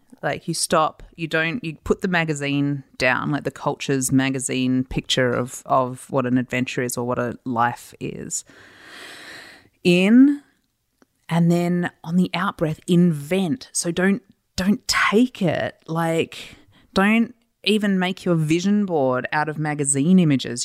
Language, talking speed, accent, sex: English, 145 wpm, Australian, female